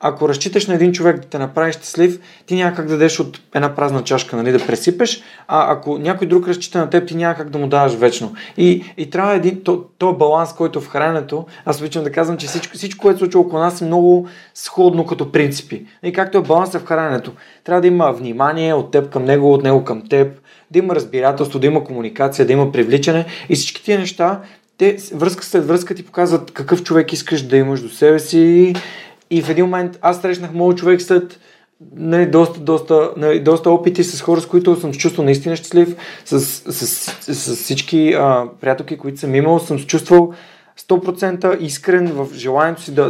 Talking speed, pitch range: 205 wpm, 150-180 Hz